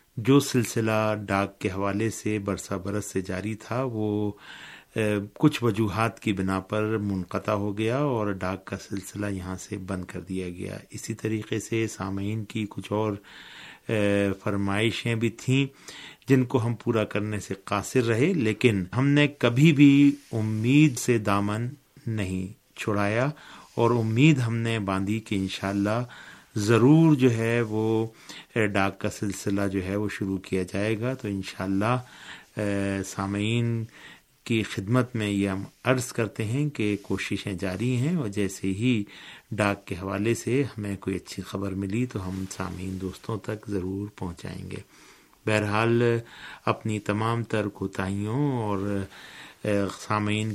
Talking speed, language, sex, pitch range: 145 wpm, Urdu, male, 100-115 Hz